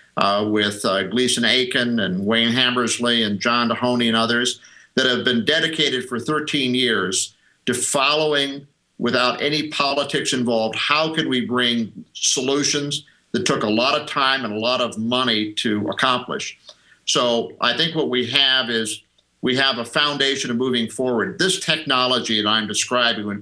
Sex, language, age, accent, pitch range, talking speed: male, English, 50-69, American, 120-145 Hz, 165 wpm